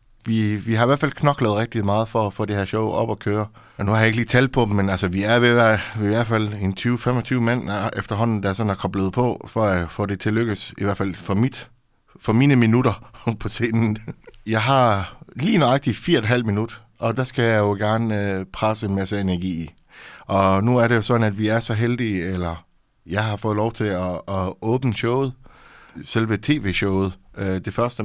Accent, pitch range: native, 100-115 Hz